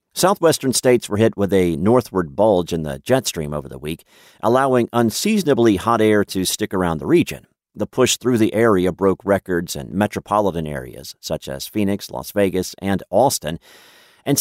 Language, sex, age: English, male, 50-69